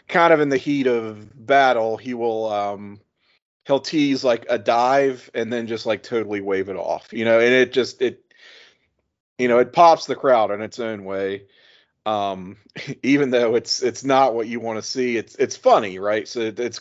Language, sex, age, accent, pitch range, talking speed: English, male, 30-49, American, 105-130 Hz, 200 wpm